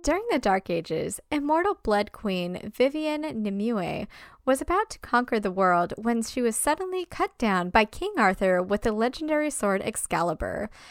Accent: American